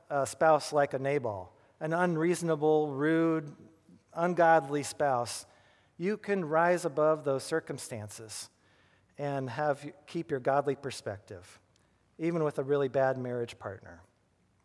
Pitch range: 125-170 Hz